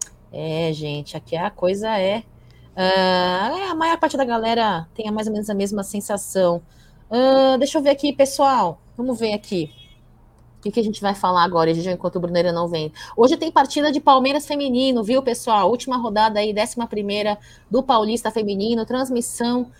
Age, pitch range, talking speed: 20-39, 195-245 Hz, 175 wpm